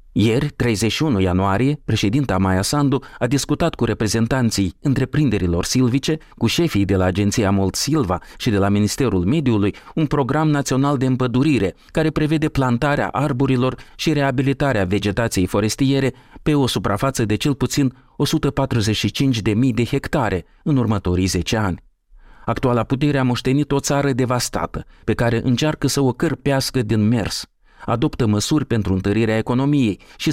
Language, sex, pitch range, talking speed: Romanian, male, 105-140 Hz, 140 wpm